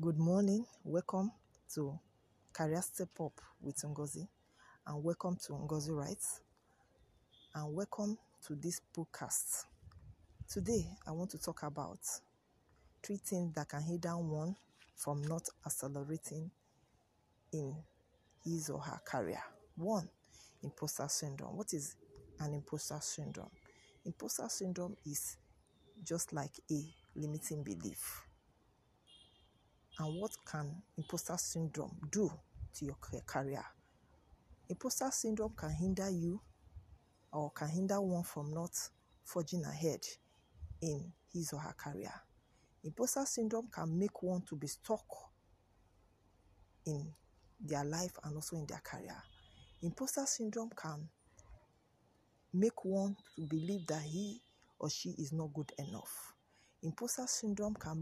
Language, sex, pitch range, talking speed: English, female, 140-180 Hz, 120 wpm